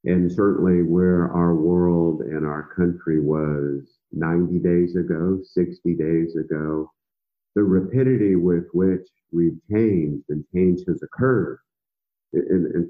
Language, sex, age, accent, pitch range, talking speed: English, male, 50-69, American, 80-95 Hz, 125 wpm